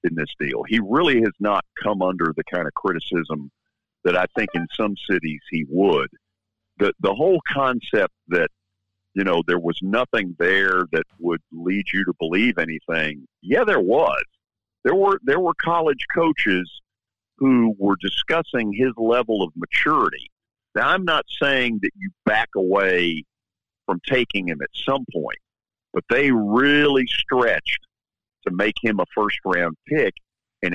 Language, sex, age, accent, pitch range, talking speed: English, male, 50-69, American, 95-140 Hz, 155 wpm